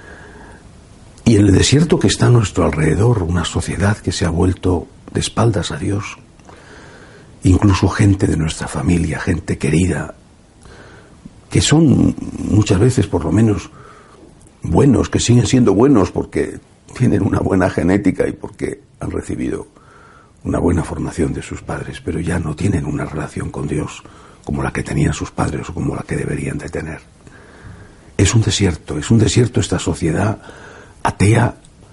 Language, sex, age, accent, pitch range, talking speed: Spanish, male, 60-79, Spanish, 85-105 Hz, 155 wpm